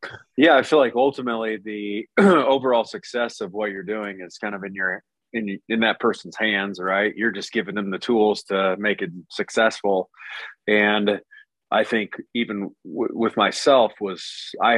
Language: English